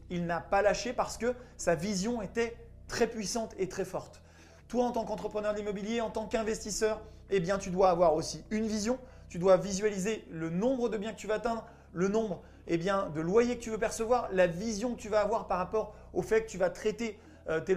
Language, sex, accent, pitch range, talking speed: French, male, French, 185-225 Hz, 225 wpm